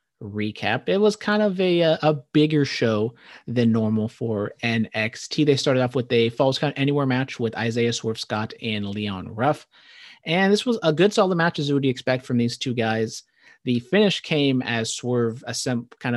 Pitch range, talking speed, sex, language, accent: 115-145 Hz, 185 wpm, male, English, American